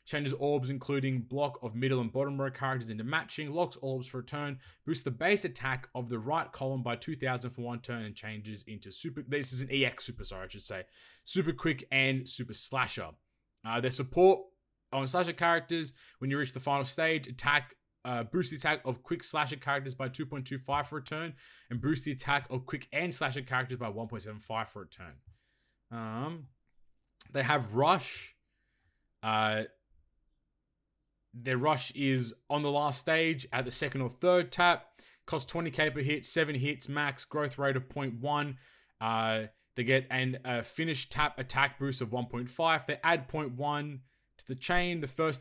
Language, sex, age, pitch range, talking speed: English, male, 20-39, 120-150 Hz, 180 wpm